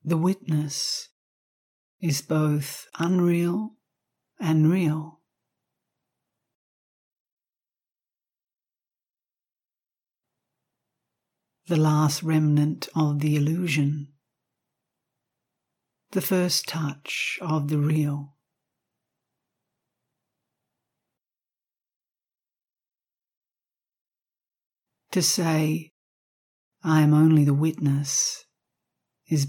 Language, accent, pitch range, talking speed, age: English, Australian, 145-170 Hz, 55 wpm, 60-79